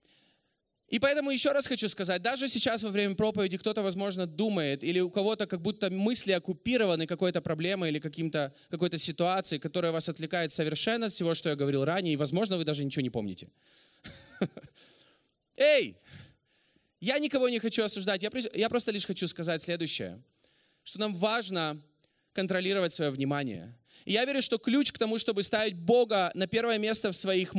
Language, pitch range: Russian, 180-235 Hz